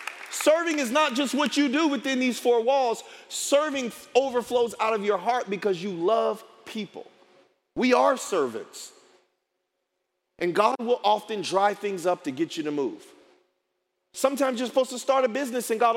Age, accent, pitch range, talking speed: 40-59, American, 200-275 Hz, 170 wpm